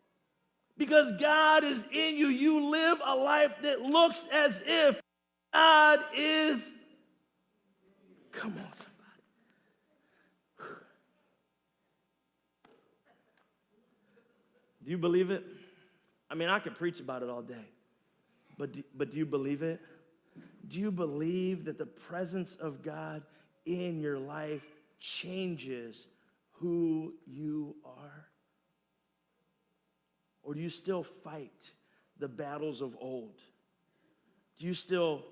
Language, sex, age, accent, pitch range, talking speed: English, male, 50-69, American, 135-185 Hz, 110 wpm